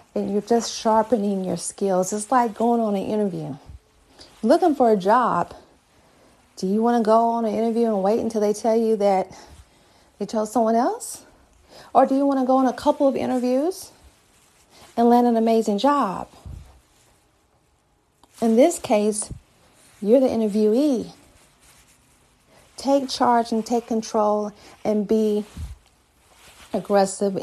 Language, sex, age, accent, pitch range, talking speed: English, female, 40-59, American, 205-255 Hz, 140 wpm